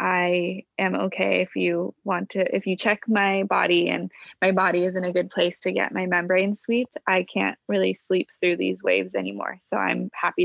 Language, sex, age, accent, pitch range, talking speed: English, female, 20-39, American, 180-200 Hz, 205 wpm